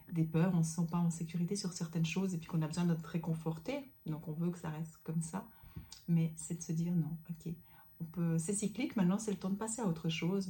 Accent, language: French, French